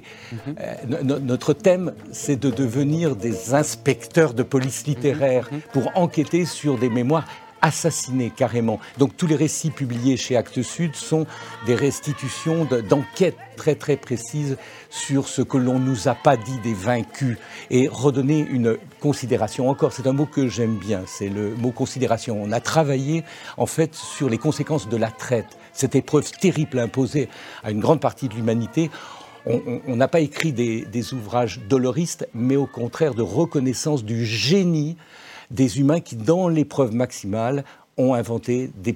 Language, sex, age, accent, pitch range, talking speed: French, male, 60-79, French, 115-145 Hz, 160 wpm